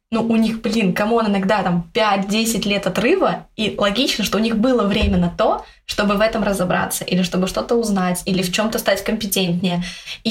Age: 20-39